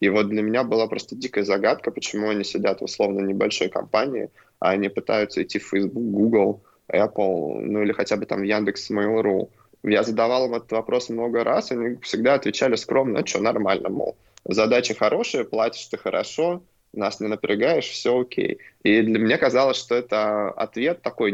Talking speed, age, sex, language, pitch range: 175 wpm, 20-39, male, Russian, 105-120 Hz